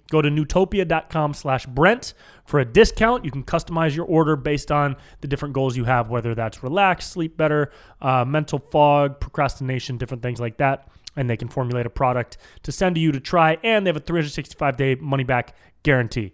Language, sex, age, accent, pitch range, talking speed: English, male, 20-39, American, 120-160 Hz, 190 wpm